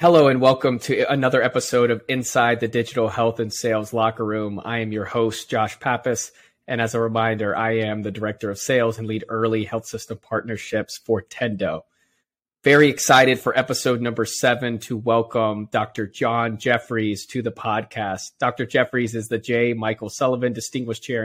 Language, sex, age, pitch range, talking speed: English, male, 30-49, 110-125 Hz, 175 wpm